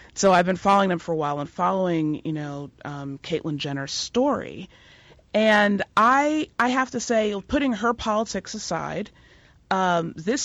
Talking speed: 160 wpm